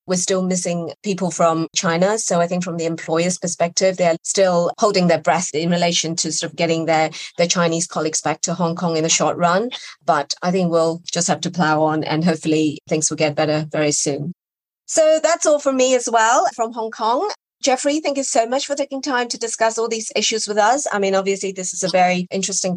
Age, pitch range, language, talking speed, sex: 30-49, 170-220 Hz, English, 225 wpm, female